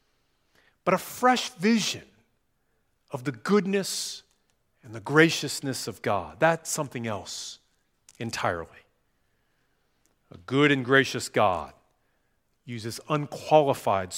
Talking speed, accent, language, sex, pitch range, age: 95 wpm, American, English, male, 110-140 Hz, 40-59